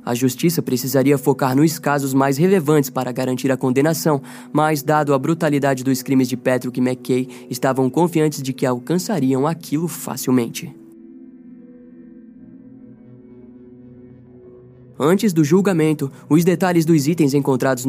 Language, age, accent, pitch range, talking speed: Portuguese, 20-39, Brazilian, 130-165 Hz, 125 wpm